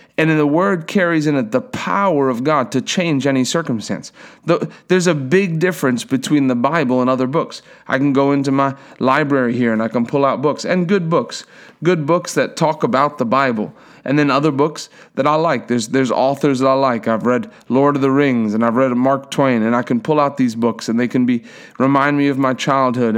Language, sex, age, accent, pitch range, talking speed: English, male, 40-59, American, 130-165 Hz, 230 wpm